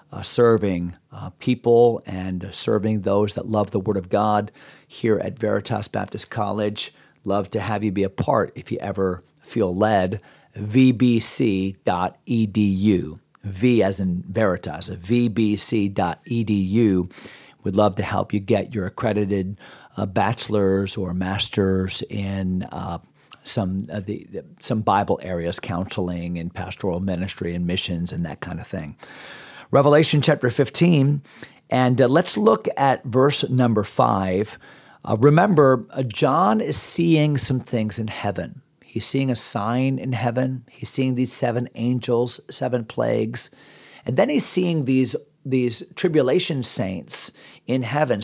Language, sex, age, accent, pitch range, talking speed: English, male, 40-59, American, 100-130 Hz, 140 wpm